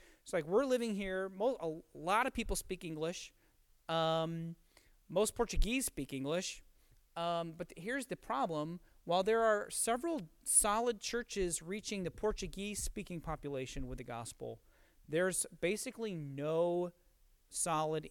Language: English